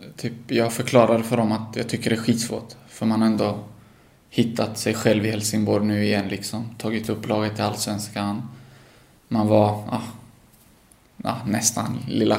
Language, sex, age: English, male, 20-39